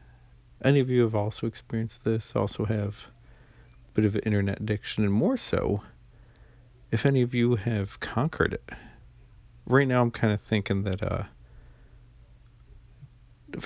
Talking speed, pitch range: 145 wpm, 90-120 Hz